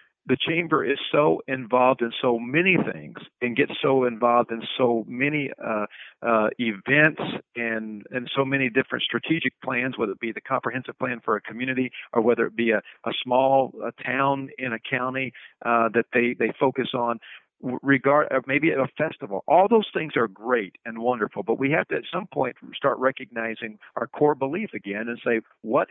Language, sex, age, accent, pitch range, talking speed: English, male, 50-69, American, 115-135 Hz, 180 wpm